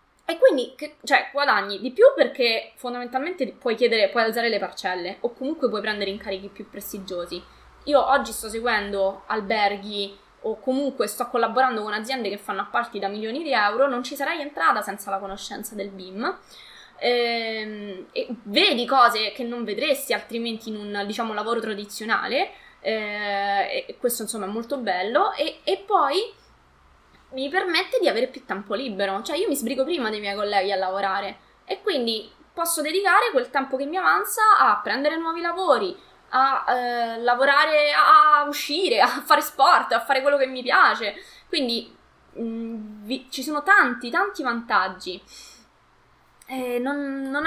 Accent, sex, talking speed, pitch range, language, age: native, female, 155 wpm, 210-285 Hz, Italian, 20-39